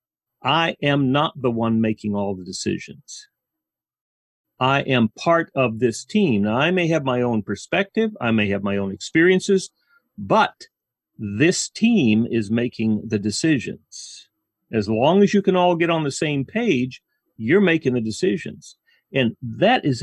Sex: male